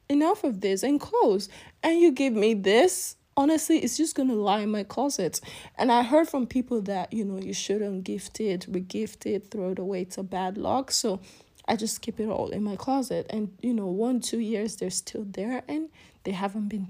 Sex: female